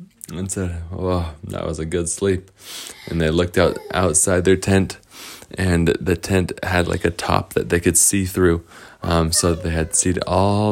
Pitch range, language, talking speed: 85-115 Hz, English, 185 wpm